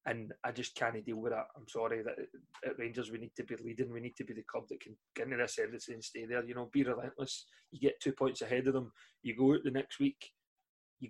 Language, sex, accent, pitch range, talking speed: English, male, British, 125-140 Hz, 265 wpm